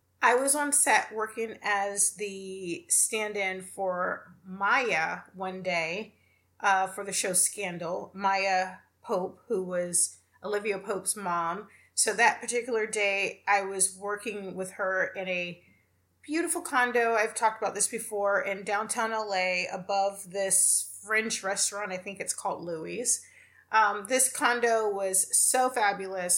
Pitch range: 190-225 Hz